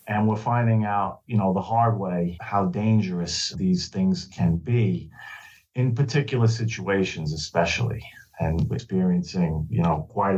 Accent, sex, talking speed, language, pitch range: American, male, 145 wpm, English, 95-125 Hz